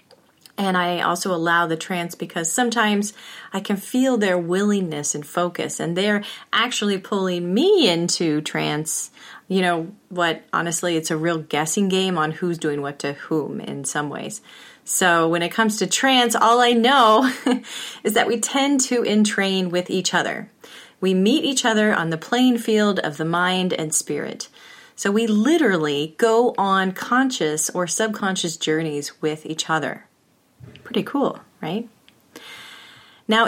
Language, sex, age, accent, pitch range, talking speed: English, female, 30-49, American, 170-225 Hz, 155 wpm